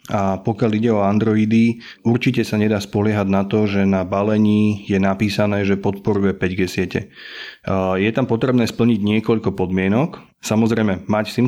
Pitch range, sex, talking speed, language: 100-120 Hz, male, 150 wpm, Slovak